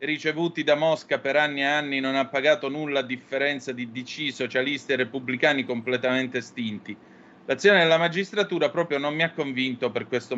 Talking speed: 175 wpm